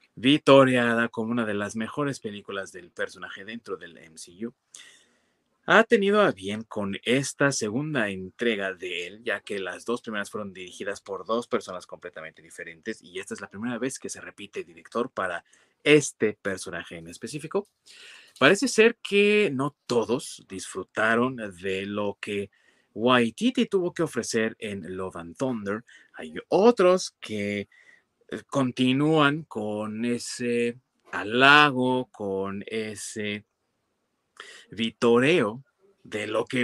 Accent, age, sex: Mexican, 30-49, male